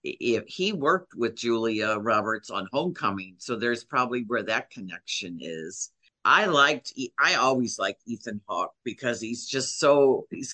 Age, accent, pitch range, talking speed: 50-69, American, 120-170 Hz, 155 wpm